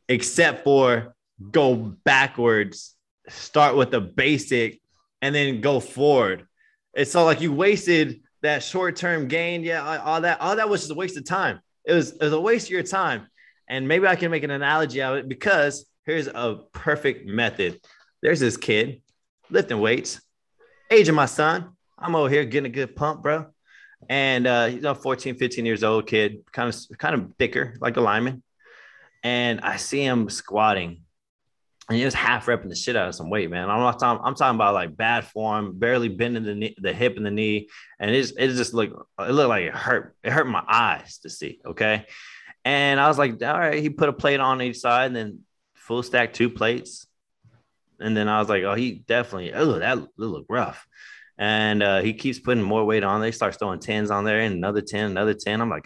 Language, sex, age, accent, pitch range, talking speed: English, male, 20-39, American, 110-150 Hz, 210 wpm